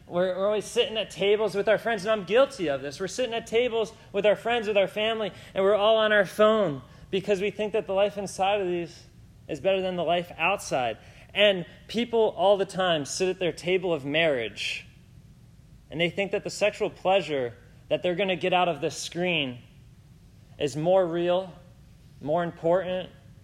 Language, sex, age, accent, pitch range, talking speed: English, male, 30-49, American, 135-200 Hz, 195 wpm